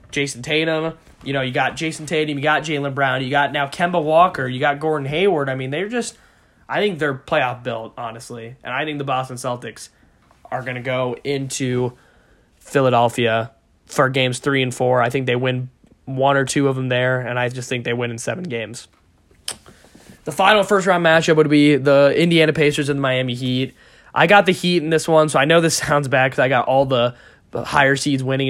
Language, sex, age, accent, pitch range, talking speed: English, male, 10-29, American, 125-145 Hz, 215 wpm